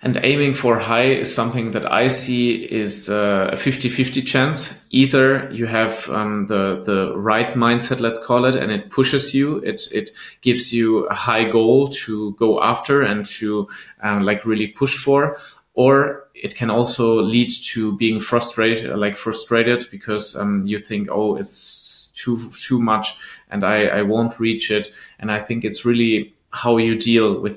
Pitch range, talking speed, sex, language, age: 100-120 Hz, 175 wpm, male, English, 20-39